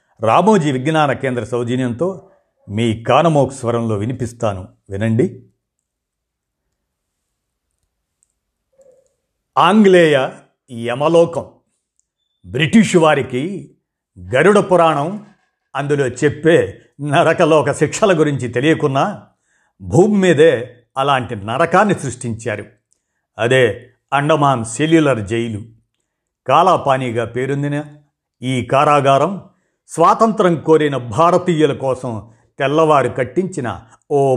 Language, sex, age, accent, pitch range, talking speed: Telugu, male, 50-69, native, 120-165 Hz, 70 wpm